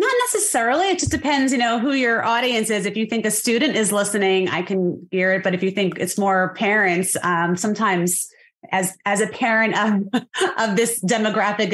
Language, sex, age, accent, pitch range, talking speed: English, female, 30-49, American, 185-240 Hz, 200 wpm